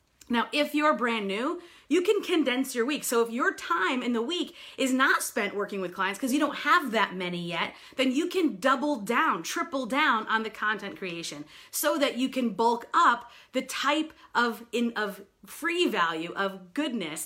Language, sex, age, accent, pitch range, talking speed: English, female, 40-59, American, 215-300 Hz, 195 wpm